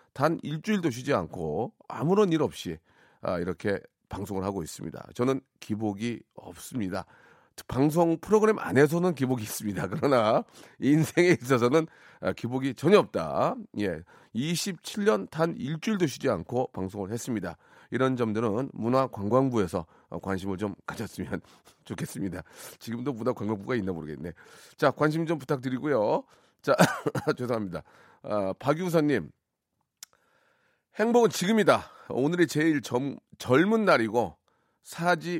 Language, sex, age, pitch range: Korean, male, 40-59, 110-160 Hz